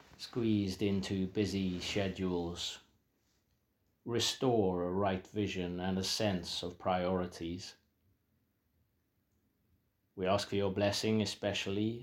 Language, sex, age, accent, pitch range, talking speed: English, male, 40-59, British, 90-105 Hz, 95 wpm